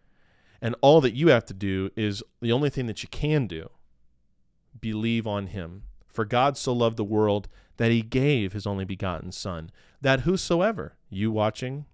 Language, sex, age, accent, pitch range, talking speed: English, male, 40-59, American, 95-130 Hz, 175 wpm